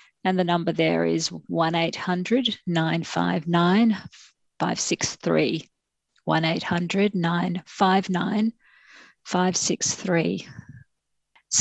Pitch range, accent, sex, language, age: 170-210 Hz, Australian, female, English, 50-69